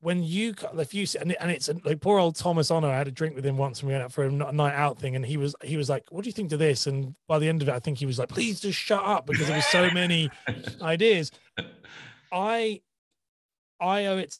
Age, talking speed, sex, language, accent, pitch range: 30-49, 270 wpm, male, English, British, 145-195 Hz